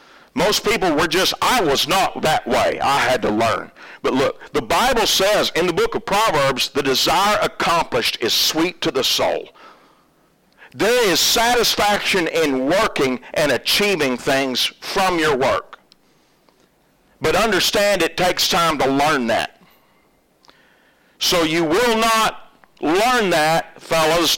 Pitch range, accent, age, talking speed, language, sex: 165-240 Hz, American, 50-69, 140 wpm, English, male